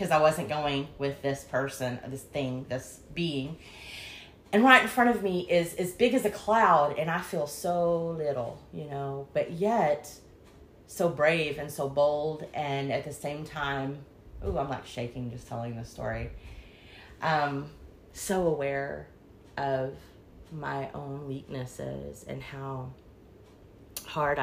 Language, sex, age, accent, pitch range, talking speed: English, female, 30-49, American, 130-150 Hz, 145 wpm